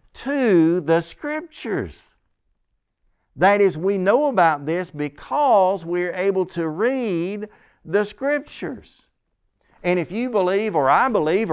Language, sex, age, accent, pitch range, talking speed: English, male, 50-69, American, 130-190 Hz, 120 wpm